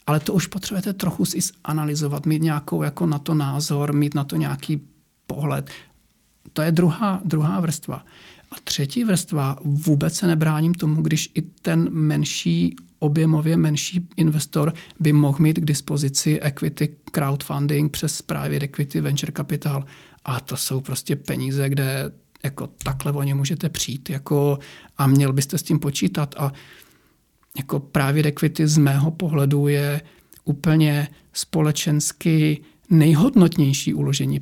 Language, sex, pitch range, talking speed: Czech, male, 145-165 Hz, 140 wpm